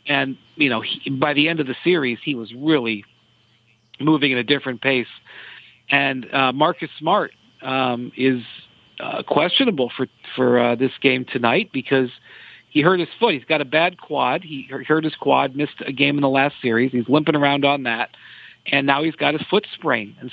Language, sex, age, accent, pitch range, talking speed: English, male, 50-69, American, 130-160 Hz, 195 wpm